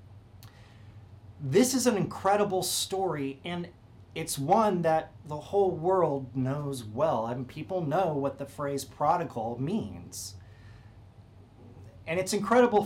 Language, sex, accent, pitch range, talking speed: English, male, American, 110-180 Hz, 115 wpm